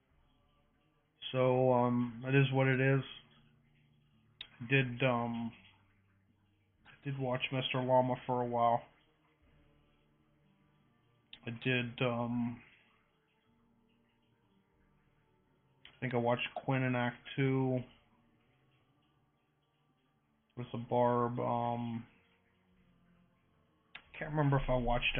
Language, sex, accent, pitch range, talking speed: English, male, American, 115-135 Hz, 95 wpm